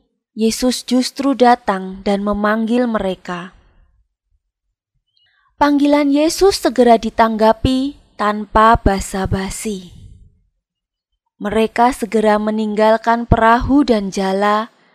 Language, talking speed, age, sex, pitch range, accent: Indonesian, 70 wpm, 20-39, female, 205-250 Hz, native